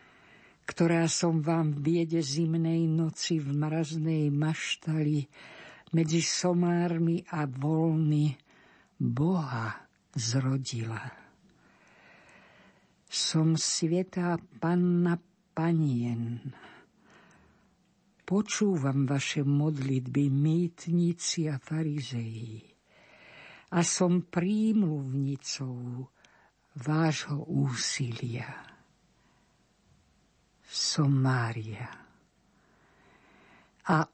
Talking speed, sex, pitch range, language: 60 wpm, female, 135-175 Hz, Slovak